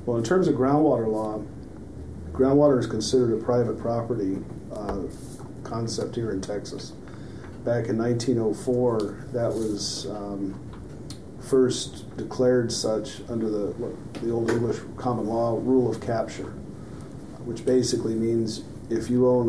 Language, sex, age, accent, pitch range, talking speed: English, male, 40-59, American, 105-120 Hz, 130 wpm